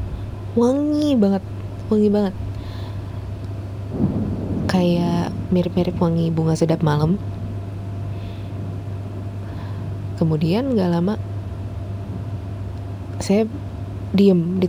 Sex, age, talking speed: female, 20-39, 65 wpm